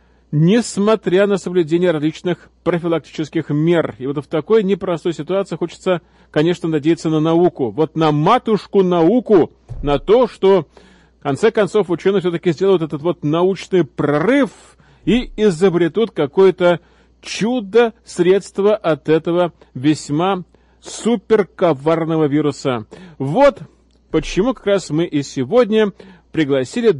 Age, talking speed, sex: 40-59, 115 wpm, male